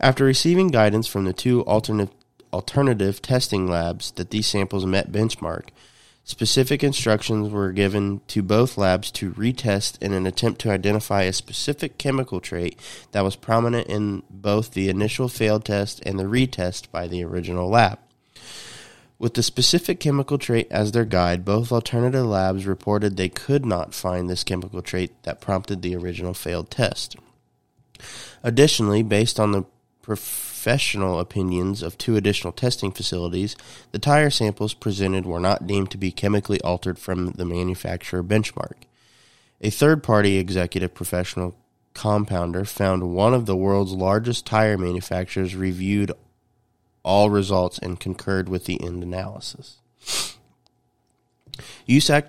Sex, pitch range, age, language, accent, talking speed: male, 95-120 Hz, 30-49, English, American, 140 wpm